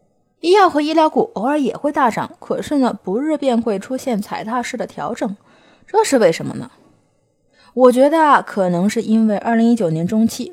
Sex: female